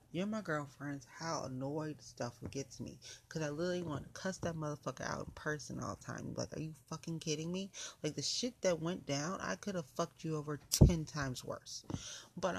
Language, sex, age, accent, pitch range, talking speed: English, female, 30-49, American, 130-170 Hz, 210 wpm